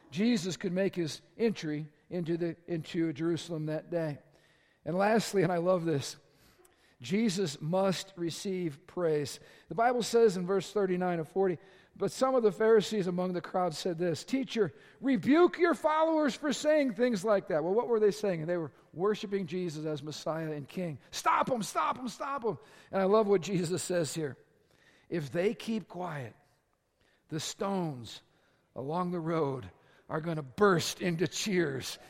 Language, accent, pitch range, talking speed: English, American, 160-205 Hz, 170 wpm